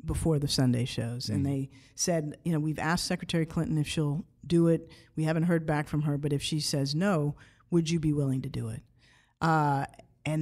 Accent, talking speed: American, 215 wpm